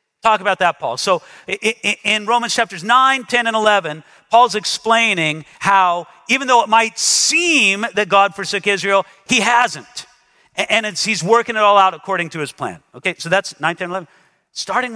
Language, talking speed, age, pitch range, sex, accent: English, 175 wpm, 50-69, 180-240 Hz, male, American